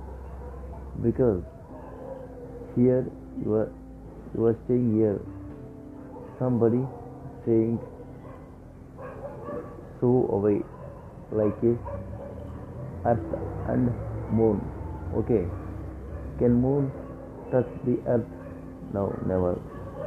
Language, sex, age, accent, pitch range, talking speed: Telugu, male, 50-69, native, 105-130 Hz, 75 wpm